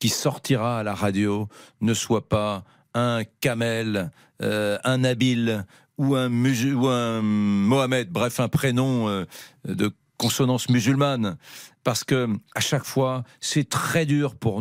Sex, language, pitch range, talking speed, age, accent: male, French, 100-130 Hz, 140 wpm, 50-69, French